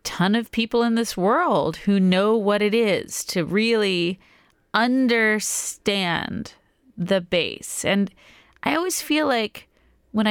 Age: 30-49